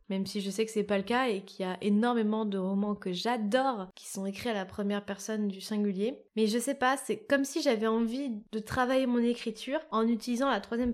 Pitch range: 205-260 Hz